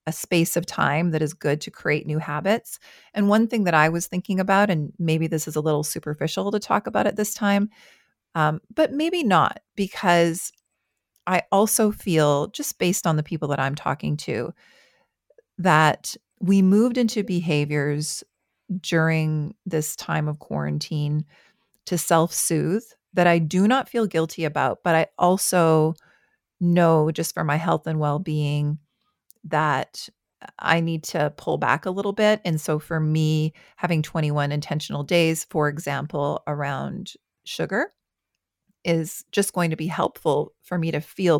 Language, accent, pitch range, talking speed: English, American, 150-185 Hz, 160 wpm